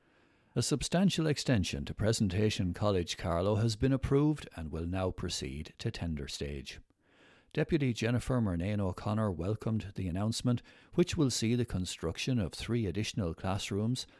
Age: 60-79